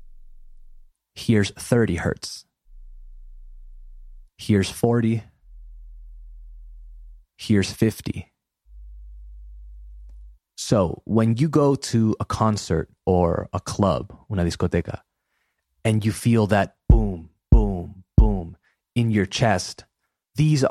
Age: 30-49